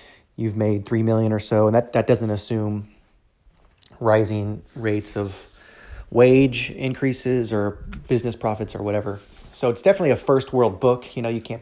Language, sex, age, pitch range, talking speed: English, male, 30-49, 105-115 Hz, 165 wpm